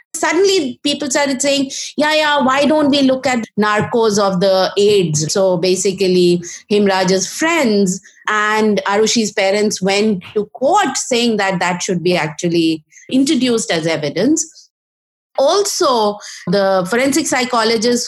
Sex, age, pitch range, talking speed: female, 30-49, 175-265 Hz, 125 wpm